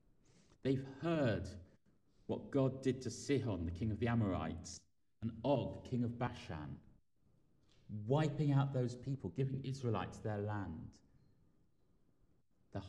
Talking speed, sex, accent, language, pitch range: 125 wpm, male, British, English, 95-125 Hz